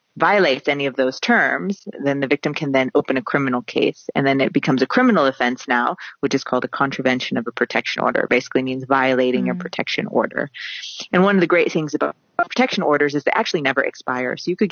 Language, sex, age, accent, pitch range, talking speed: English, female, 30-49, American, 135-155 Hz, 225 wpm